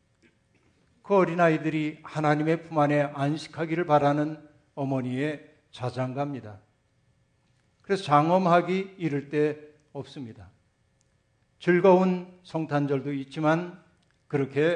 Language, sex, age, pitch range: Korean, male, 60-79, 135-175 Hz